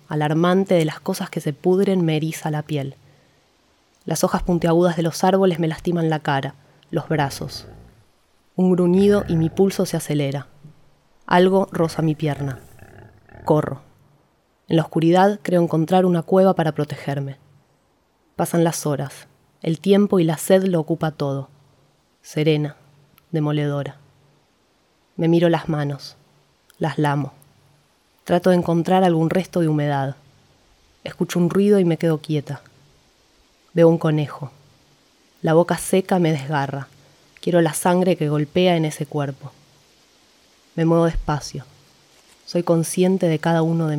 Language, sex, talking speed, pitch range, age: Spanish, female, 140 wpm, 145-175 Hz, 20-39